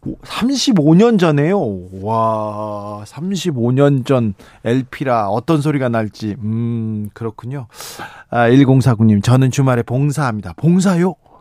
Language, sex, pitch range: Korean, male, 120-165 Hz